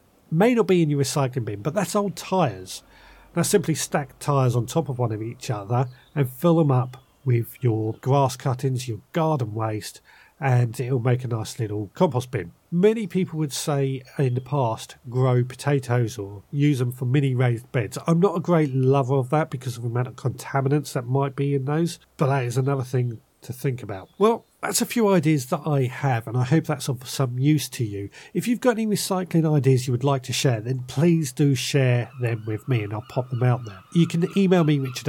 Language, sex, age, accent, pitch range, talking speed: English, male, 40-59, British, 120-160 Hz, 220 wpm